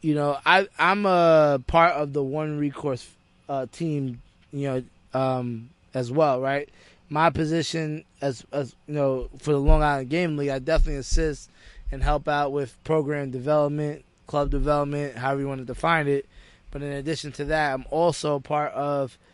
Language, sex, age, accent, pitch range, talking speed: English, male, 20-39, American, 135-155 Hz, 175 wpm